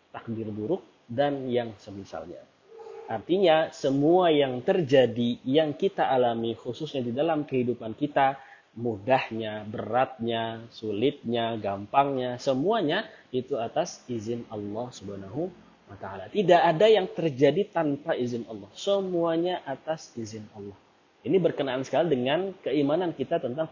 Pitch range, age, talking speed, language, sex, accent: 115-155 Hz, 30-49, 115 wpm, Indonesian, male, native